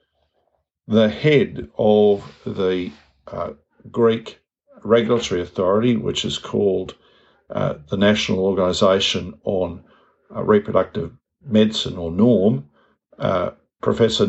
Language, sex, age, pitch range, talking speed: English, male, 50-69, 100-120 Hz, 95 wpm